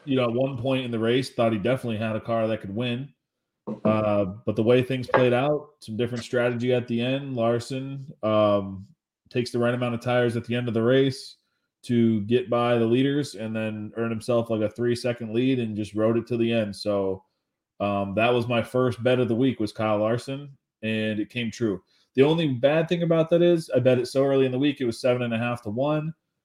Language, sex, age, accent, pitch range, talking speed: English, male, 20-39, American, 110-130 Hz, 235 wpm